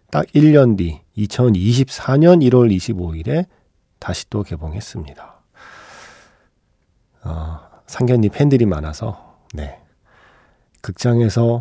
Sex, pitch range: male, 95-140 Hz